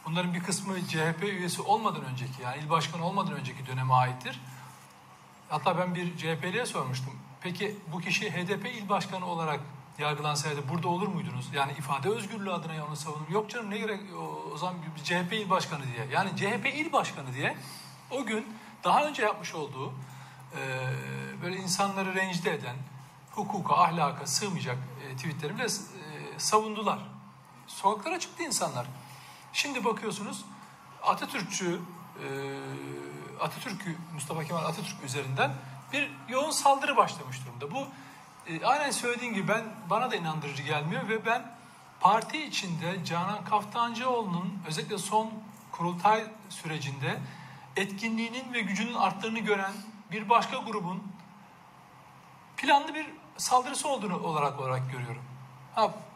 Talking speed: 130 wpm